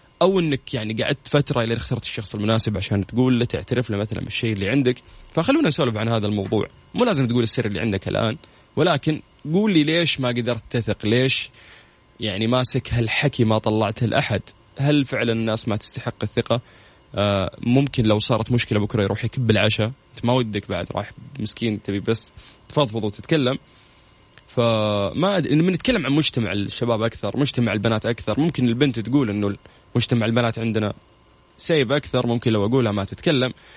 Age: 20-39